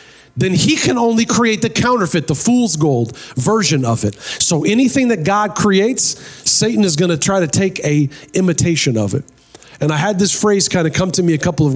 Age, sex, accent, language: 40-59, male, American, English